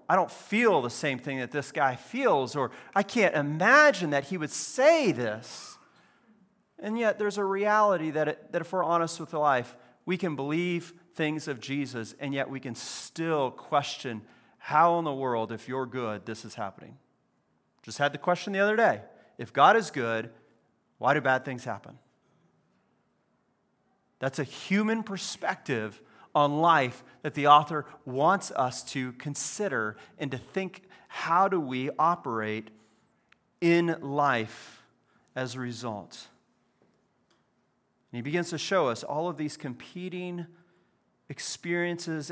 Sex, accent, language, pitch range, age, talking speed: male, American, English, 130-180 Hz, 40-59, 150 wpm